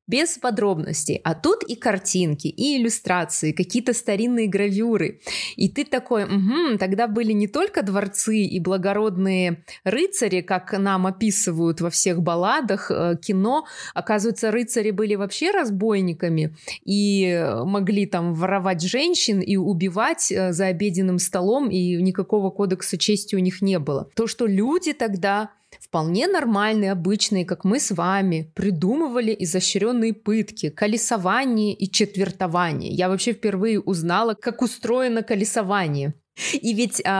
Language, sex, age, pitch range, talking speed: Russian, female, 20-39, 185-225 Hz, 125 wpm